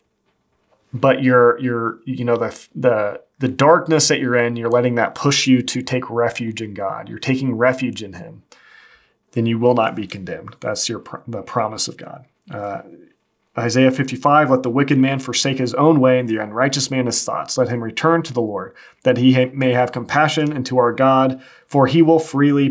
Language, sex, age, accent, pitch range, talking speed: English, male, 30-49, American, 120-140 Hz, 205 wpm